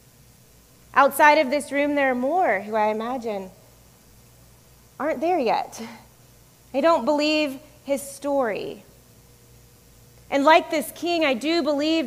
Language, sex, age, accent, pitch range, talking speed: English, female, 30-49, American, 235-300 Hz, 125 wpm